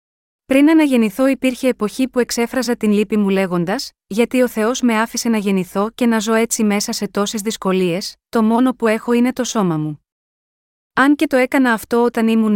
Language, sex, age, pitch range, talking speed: Greek, female, 30-49, 200-245 Hz, 190 wpm